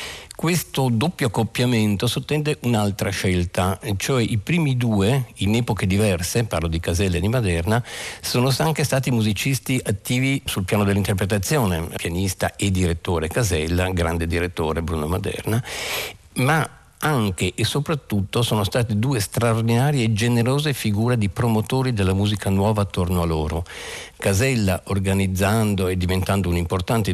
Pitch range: 95-125 Hz